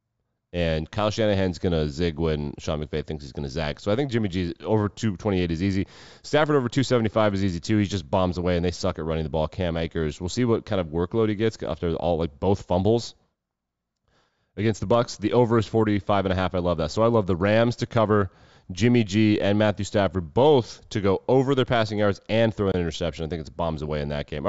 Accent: American